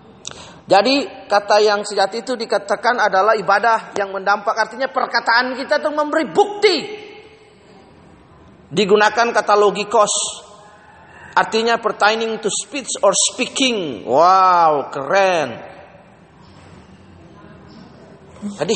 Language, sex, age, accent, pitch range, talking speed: Indonesian, male, 30-49, native, 175-250 Hz, 90 wpm